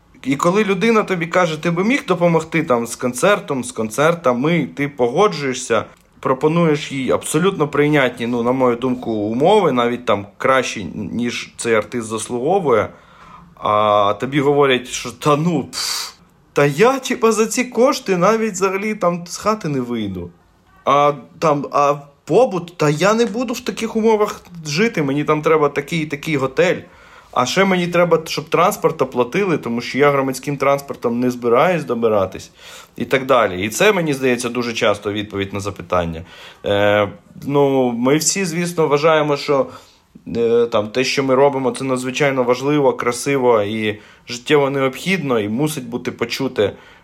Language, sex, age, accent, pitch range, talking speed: Ukrainian, male, 20-39, native, 125-175 Hz, 155 wpm